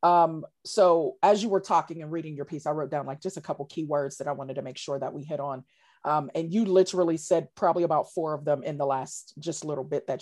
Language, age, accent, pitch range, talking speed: English, 40-59, American, 155-195 Hz, 270 wpm